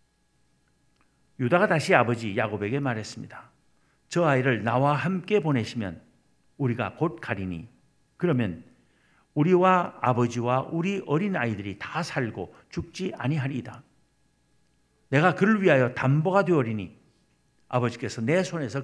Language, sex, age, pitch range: Korean, male, 50-69, 110-165 Hz